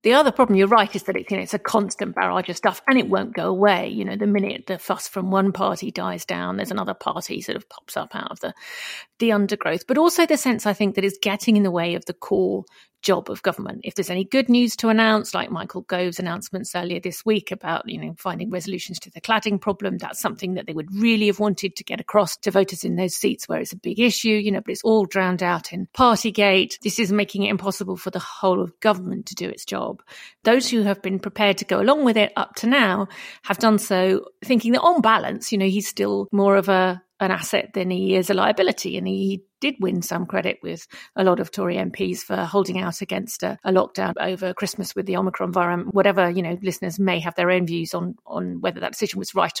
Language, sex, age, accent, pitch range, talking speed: English, female, 40-59, British, 185-215 Hz, 255 wpm